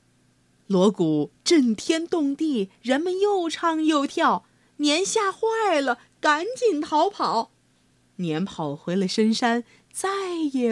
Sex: female